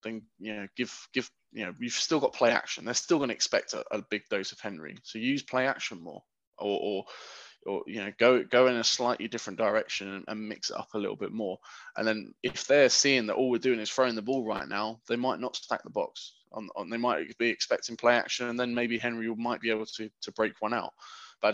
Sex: male